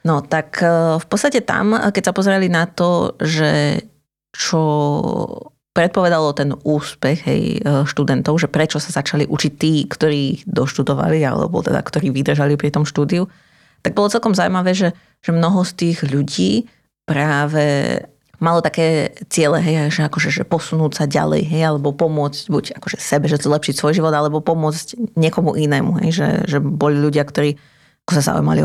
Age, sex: 30-49, female